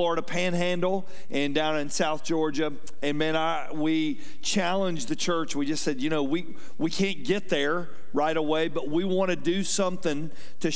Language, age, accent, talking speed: English, 40-59, American, 185 wpm